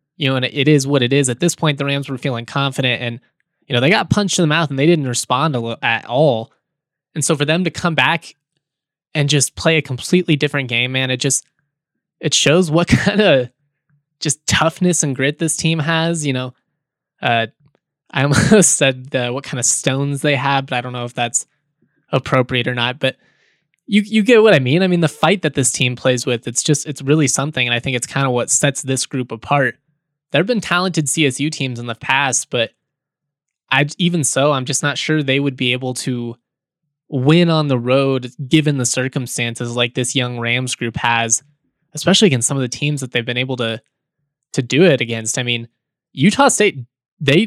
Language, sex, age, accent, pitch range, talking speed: English, male, 20-39, American, 125-155 Hz, 215 wpm